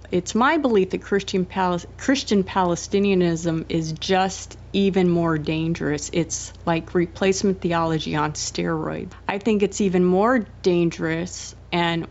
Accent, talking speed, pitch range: American, 125 wpm, 160-185 Hz